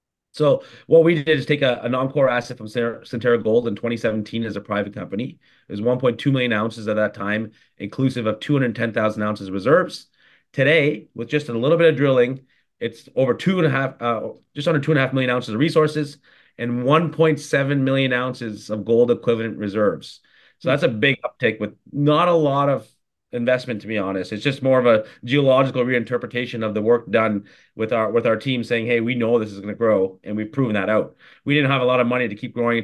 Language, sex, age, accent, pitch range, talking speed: English, male, 30-49, American, 110-135 Hz, 215 wpm